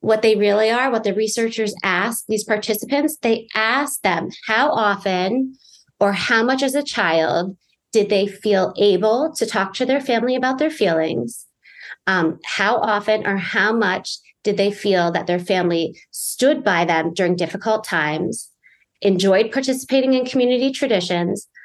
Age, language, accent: 30-49, English, American